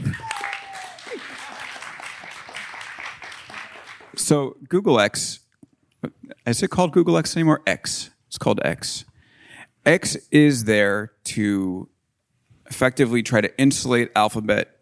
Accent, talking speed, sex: American, 90 wpm, male